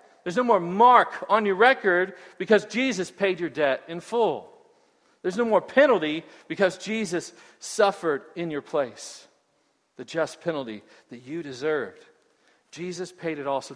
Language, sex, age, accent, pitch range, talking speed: English, male, 40-59, American, 135-175 Hz, 155 wpm